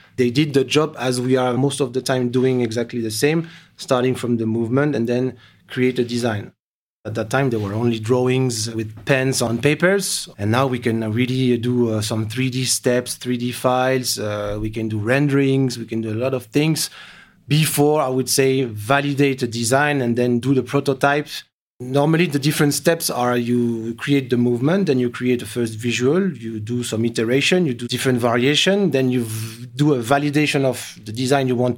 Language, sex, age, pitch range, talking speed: English, male, 30-49, 115-140 Hz, 195 wpm